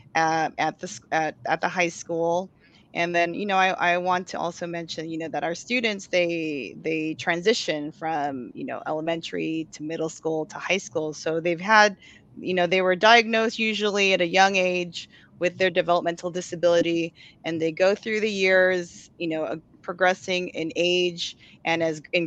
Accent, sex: American, female